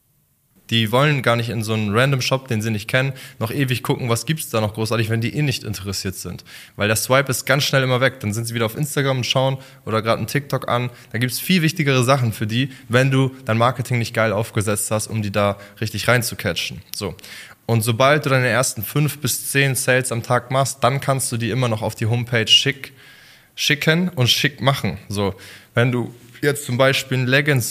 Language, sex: German, male